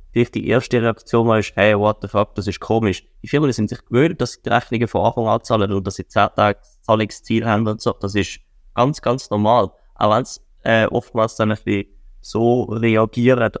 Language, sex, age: German, male, 20-39